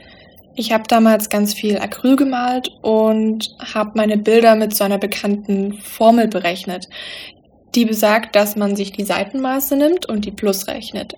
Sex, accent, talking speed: female, German, 155 wpm